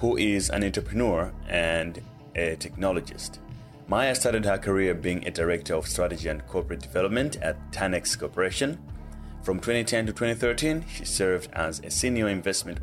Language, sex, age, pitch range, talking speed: English, male, 30-49, 85-115 Hz, 150 wpm